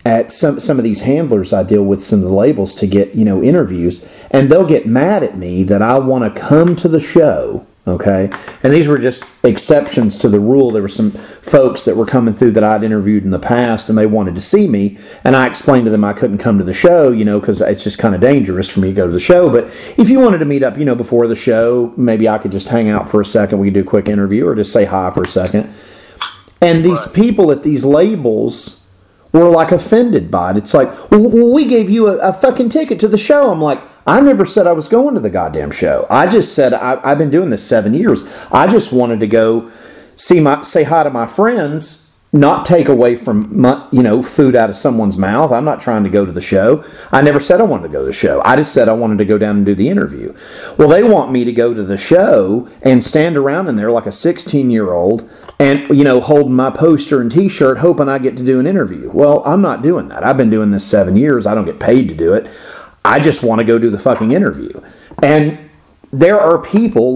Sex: male